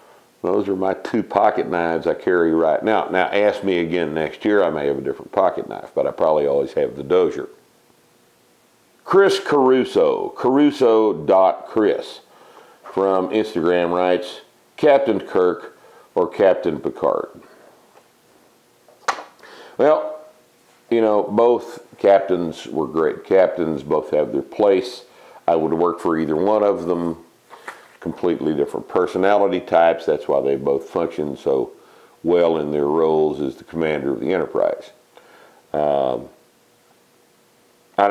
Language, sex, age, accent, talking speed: English, male, 50-69, American, 130 wpm